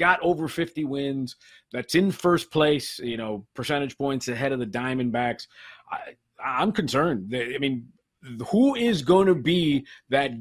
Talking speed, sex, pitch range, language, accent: 155 wpm, male, 125-170 Hz, English, American